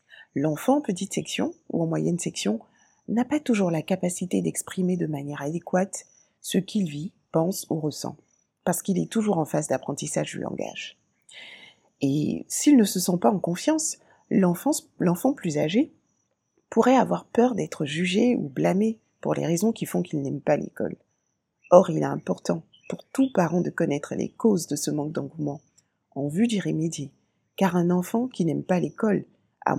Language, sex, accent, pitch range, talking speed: French, female, French, 160-205 Hz, 175 wpm